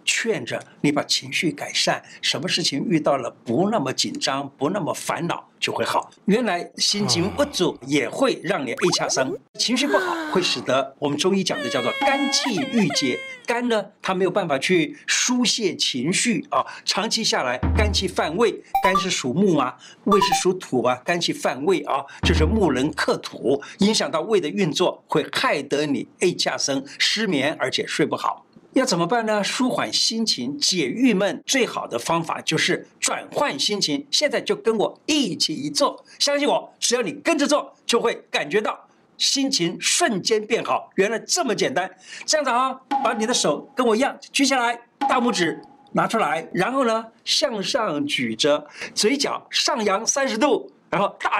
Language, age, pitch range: Chinese, 60-79, 195-275 Hz